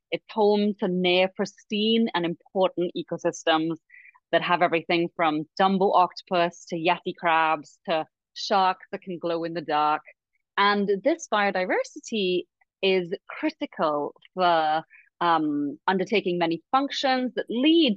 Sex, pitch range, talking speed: female, 170-225 Hz, 125 wpm